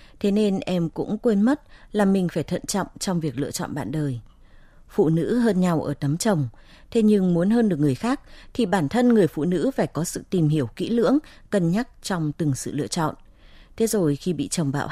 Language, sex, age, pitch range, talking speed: Vietnamese, female, 20-39, 150-210 Hz, 230 wpm